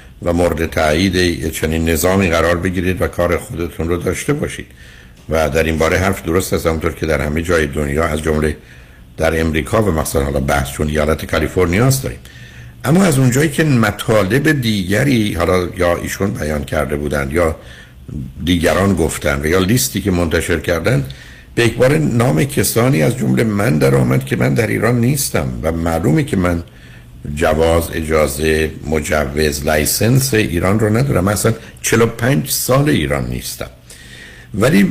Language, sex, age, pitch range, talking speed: Persian, male, 60-79, 75-100 Hz, 155 wpm